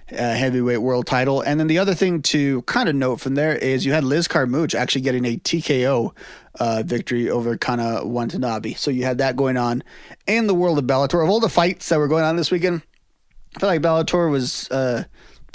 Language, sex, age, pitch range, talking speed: English, male, 30-49, 125-150 Hz, 215 wpm